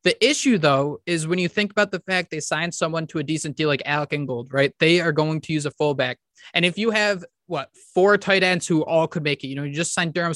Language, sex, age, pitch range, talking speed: English, male, 20-39, 150-180 Hz, 270 wpm